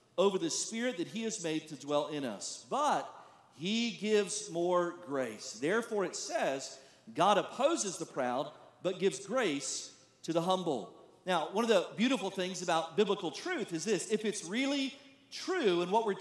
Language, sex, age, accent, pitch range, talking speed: English, male, 40-59, American, 185-245 Hz, 175 wpm